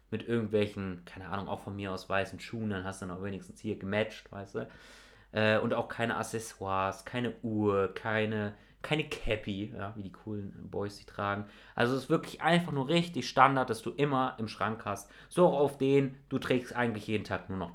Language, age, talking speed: German, 30-49, 205 wpm